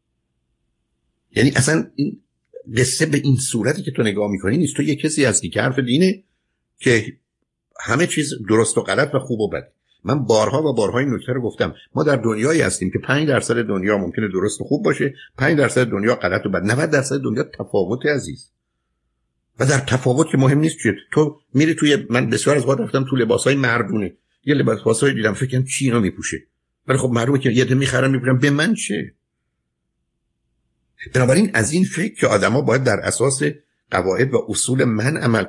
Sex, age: male, 50-69